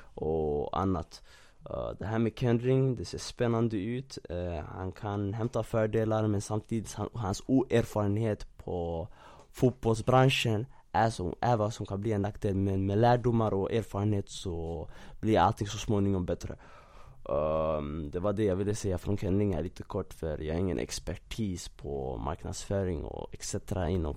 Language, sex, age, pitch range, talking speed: Swedish, male, 20-39, 90-110 Hz, 150 wpm